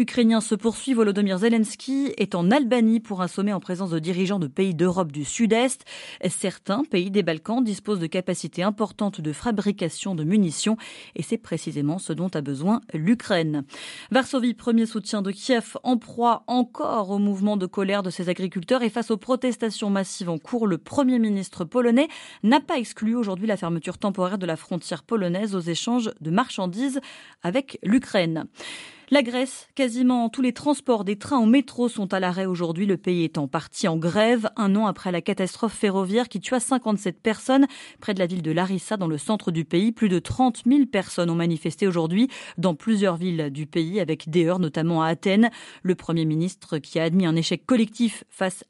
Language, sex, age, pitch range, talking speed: French, female, 30-49, 175-235 Hz, 190 wpm